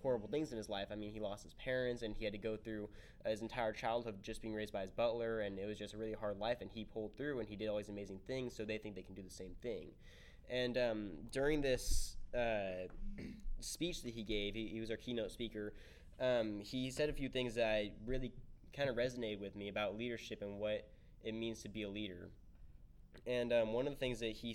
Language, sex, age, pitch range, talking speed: English, male, 10-29, 105-125 Hz, 245 wpm